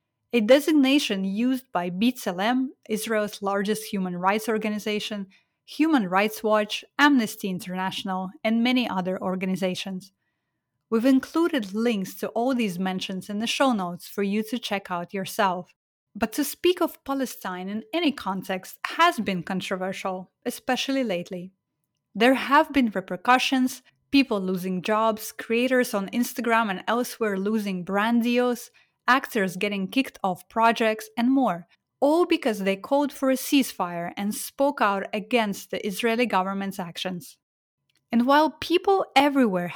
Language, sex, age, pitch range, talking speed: English, female, 30-49, 190-255 Hz, 135 wpm